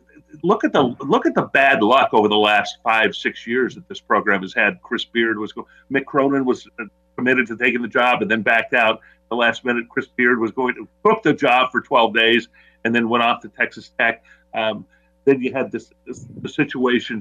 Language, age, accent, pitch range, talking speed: English, 50-69, American, 105-155 Hz, 225 wpm